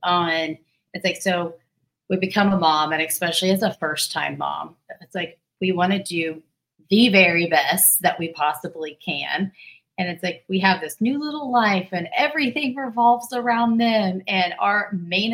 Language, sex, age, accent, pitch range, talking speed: English, female, 30-49, American, 160-200 Hz, 175 wpm